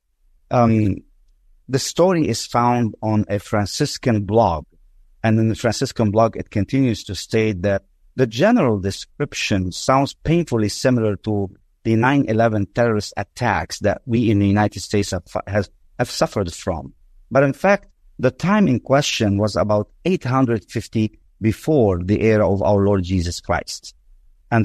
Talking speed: 145 wpm